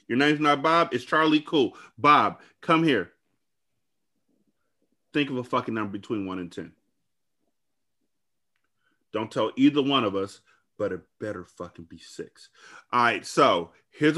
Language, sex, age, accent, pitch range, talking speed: English, male, 30-49, American, 105-150 Hz, 150 wpm